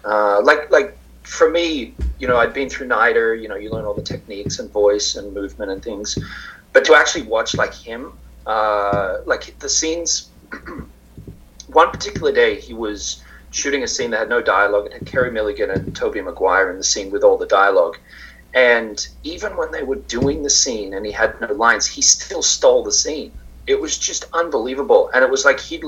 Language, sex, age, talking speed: English, male, 30-49, 200 wpm